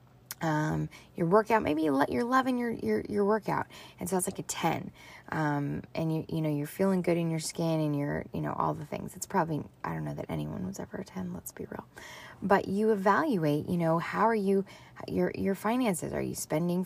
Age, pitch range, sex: 20-39, 150-200 Hz, female